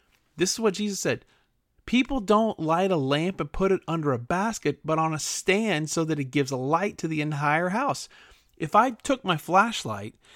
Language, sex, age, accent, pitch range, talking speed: English, male, 30-49, American, 140-195 Hz, 205 wpm